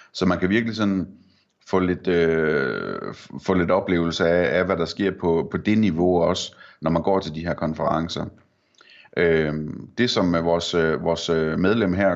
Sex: male